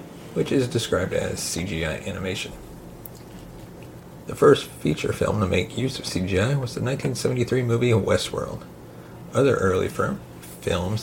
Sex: male